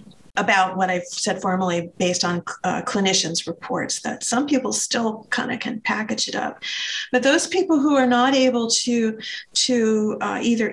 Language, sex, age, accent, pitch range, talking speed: English, female, 40-59, American, 190-245 Hz, 175 wpm